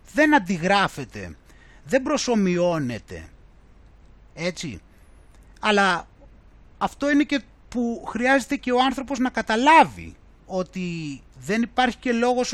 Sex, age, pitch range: male, 30-49, 145-195 Hz